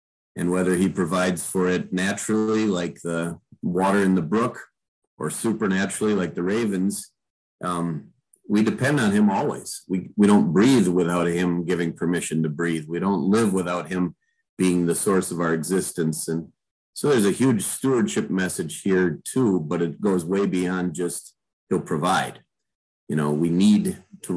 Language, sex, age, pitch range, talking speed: English, male, 40-59, 85-105 Hz, 165 wpm